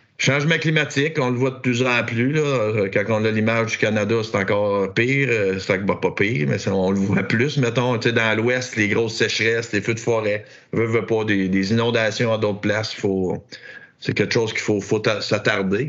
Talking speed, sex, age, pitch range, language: 205 wpm, male, 50-69, 100-120 Hz, French